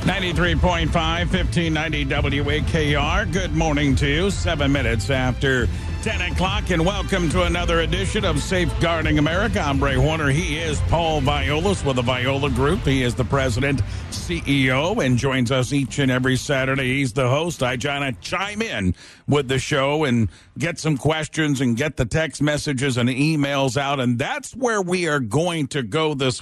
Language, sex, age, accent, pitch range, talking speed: English, male, 50-69, American, 130-165 Hz, 165 wpm